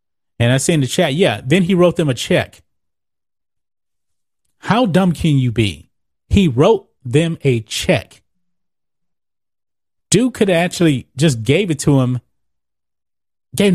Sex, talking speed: male, 145 wpm